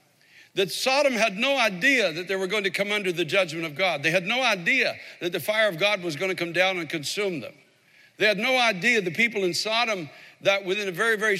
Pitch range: 185-220 Hz